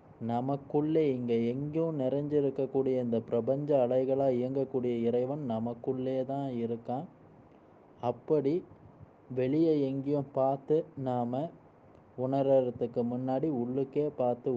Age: 20-39